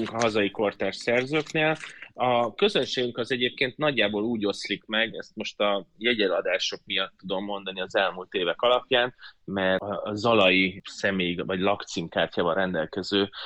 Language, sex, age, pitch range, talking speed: Hungarian, male, 20-39, 95-120 Hz, 135 wpm